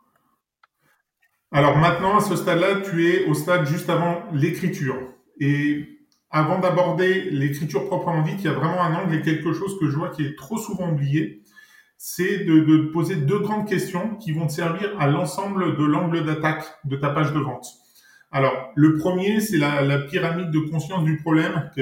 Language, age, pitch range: French, 40-59, 140-175 Hz